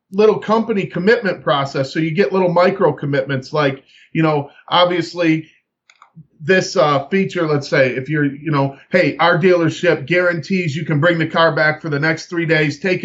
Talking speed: 180 wpm